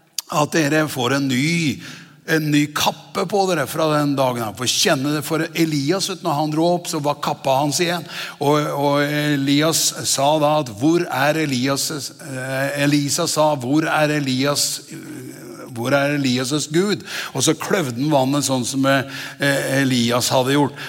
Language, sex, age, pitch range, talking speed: English, male, 60-79, 130-155 Hz, 155 wpm